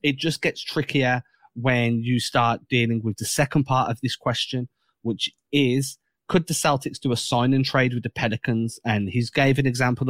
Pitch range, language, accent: 115-140 Hz, English, British